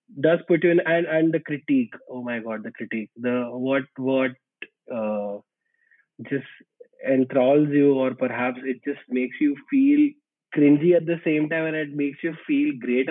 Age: 20-39